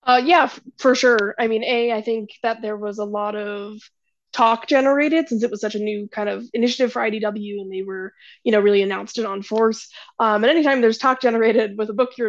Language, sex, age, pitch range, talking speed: English, female, 20-39, 210-275 Hz, 235 wpm